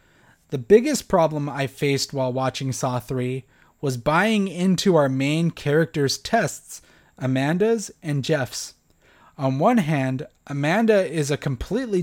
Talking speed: 130 wpm